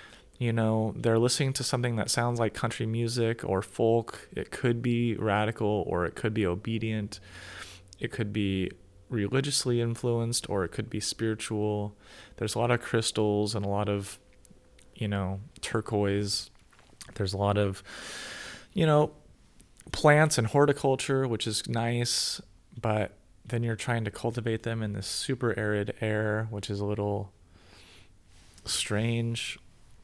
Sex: male